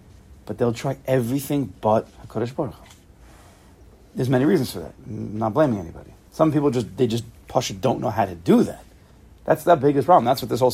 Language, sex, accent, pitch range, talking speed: English, male, American, 105-130 Hz, 200 wpm